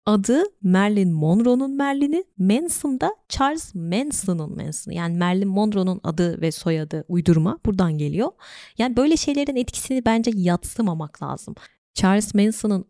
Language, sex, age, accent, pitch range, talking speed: Turkish, female, 30-49, native, 165-215 Hz, 120 wpm